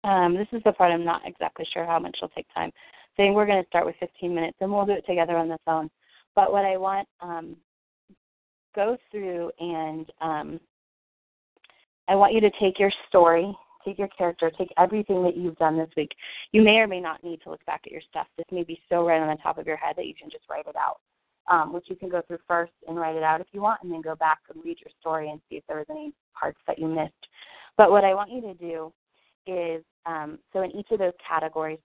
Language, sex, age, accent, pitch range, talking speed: English, female, 20-39, American, 160-190 Hz, 250 wpm